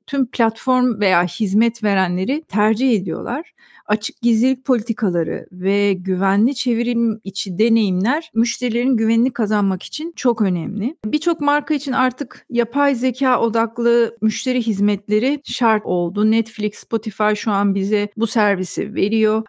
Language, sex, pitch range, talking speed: Turkish, female, 200-245 Hz, 125 wpm